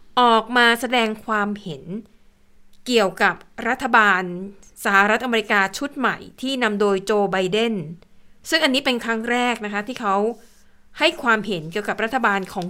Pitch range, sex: 200-245 Hz, female